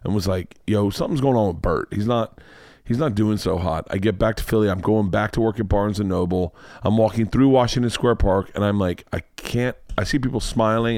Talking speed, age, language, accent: 245 wpm, 30-49, English, American